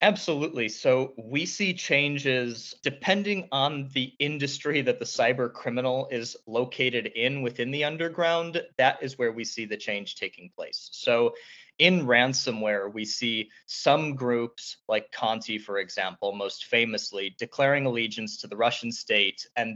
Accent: American